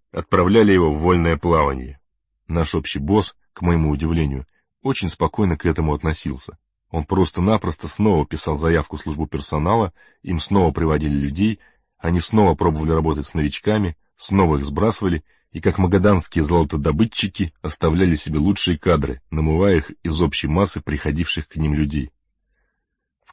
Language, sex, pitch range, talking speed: Russian, male, 80-95 Hz, 140 wpm